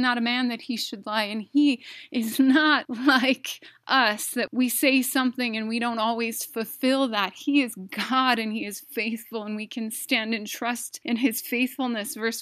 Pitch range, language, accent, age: 225-260 Hz, English, American, 20-39